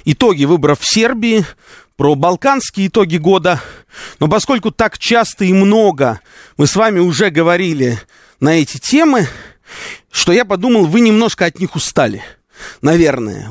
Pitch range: 150-215 Hz